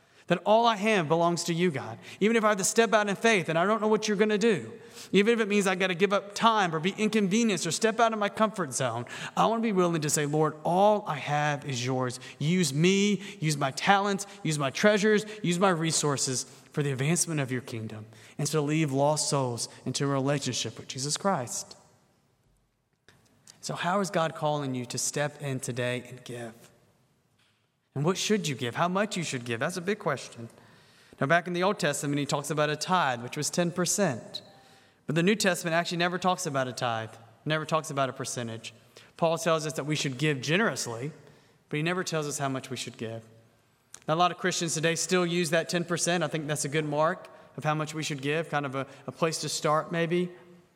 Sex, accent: male, American